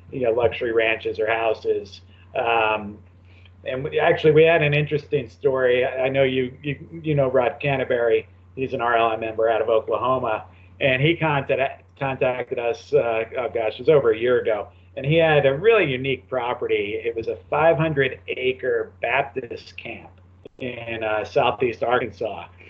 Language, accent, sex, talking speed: English, American, male, 160 wpm